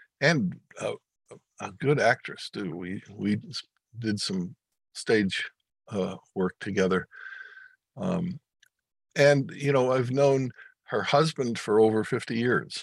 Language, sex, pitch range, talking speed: English, male, 100-145 Hz, 120 wpm